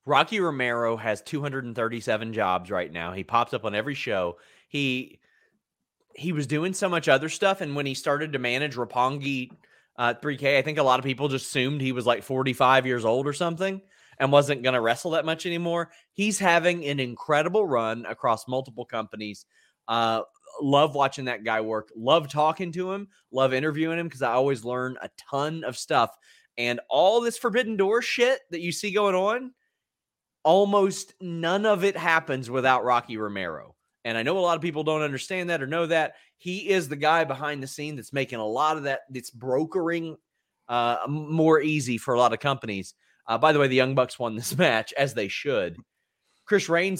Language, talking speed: English, 195 wpm